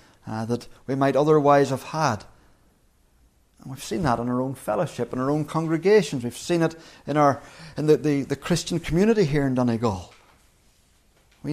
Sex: male